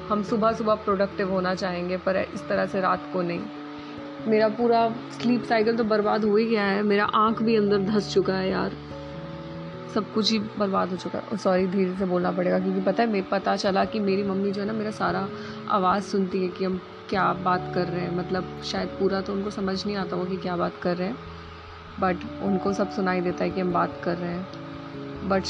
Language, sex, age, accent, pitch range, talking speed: Hindi, female, 20-39, native, 180-230 Hz, 225 wpm